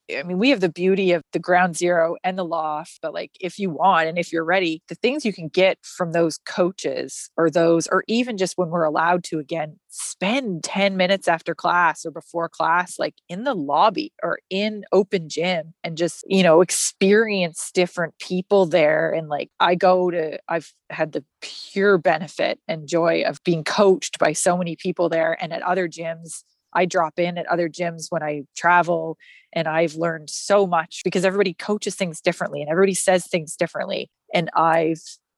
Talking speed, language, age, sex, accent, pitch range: 195 wpm, English, 20-39, female, American, 165-190 Hz